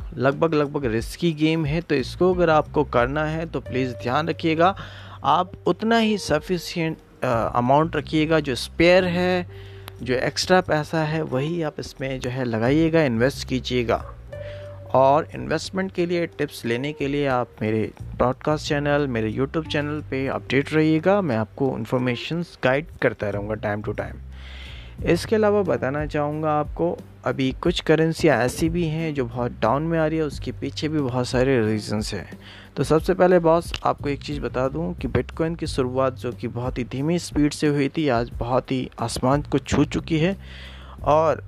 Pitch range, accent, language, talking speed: 120-160 Hz, native, Hindi, 170 wpm